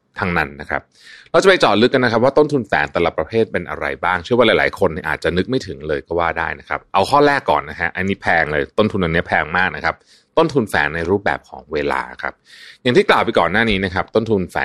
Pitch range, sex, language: 85-115 Hz, male, Thai